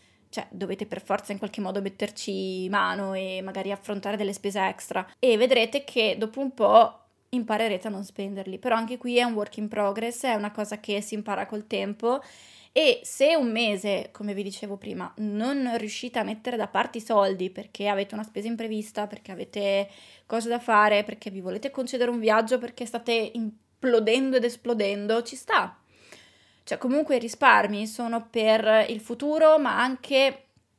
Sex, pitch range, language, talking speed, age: female, 205-240 Hz, Italian, 175 wpm, 20-39